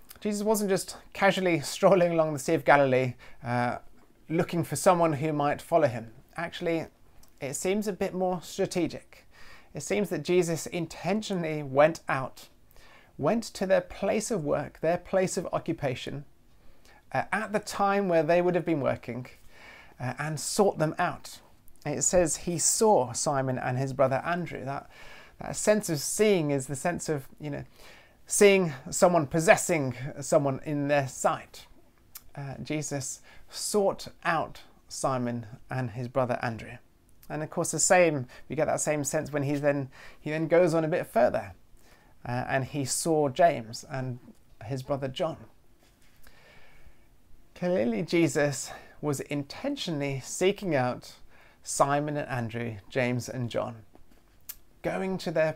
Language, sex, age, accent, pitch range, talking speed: English, male, 30-49, British, 130-175 Hz, 150 wpm